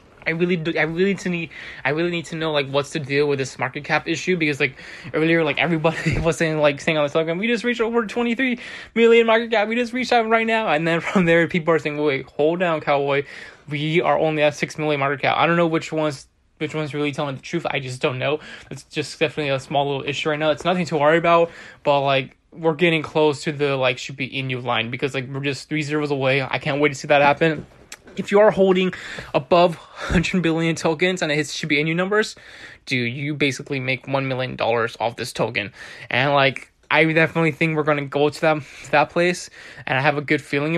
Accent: American